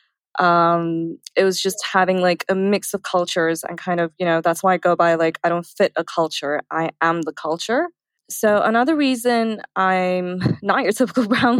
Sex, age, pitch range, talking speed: female, 20-39, 170-205 Hz, 195 wpm